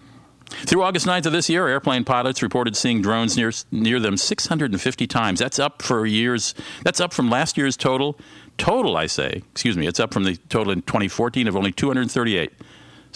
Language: English